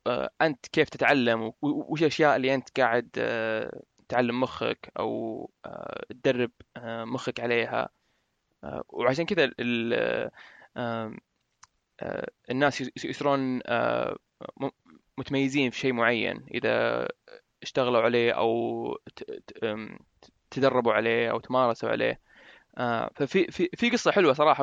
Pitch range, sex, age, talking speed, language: 120-145 Hz, male, 20-39, 90 wpm, Arabic